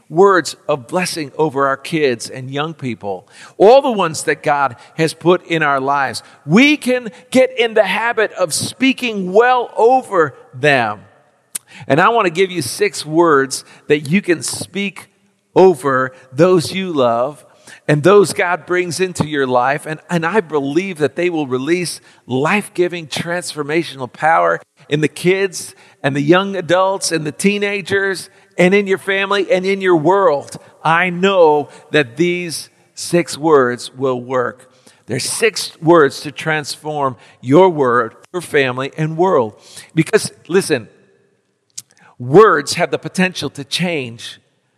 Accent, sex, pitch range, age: American, male, 140-190 Hz, 50-69